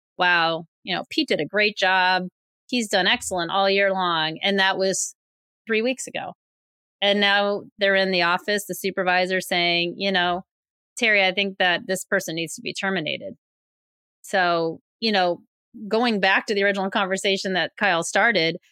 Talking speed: 170 wpm